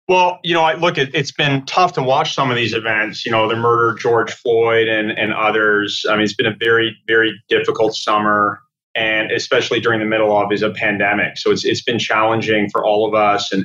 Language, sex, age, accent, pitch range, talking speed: English, male, 30-49, American, 105-125 Hz, 235 wpm